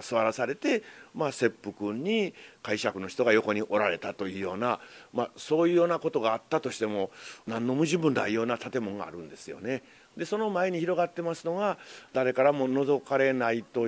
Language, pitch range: Japanese, 105-160 Hz